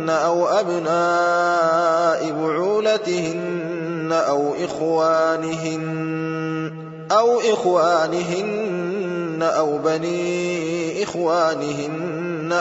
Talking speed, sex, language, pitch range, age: 50 wpm, male, Arabic, 160-175 Hz, 20-39